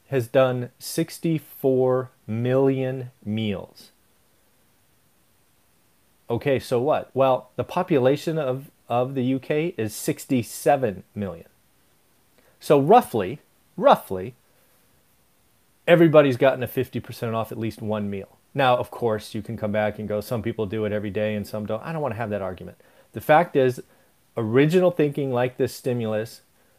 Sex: male